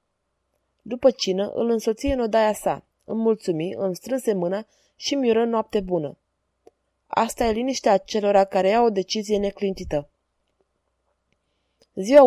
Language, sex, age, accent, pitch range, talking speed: Romanian, female, 20-39, native, 190-235 Hz, 125 wpm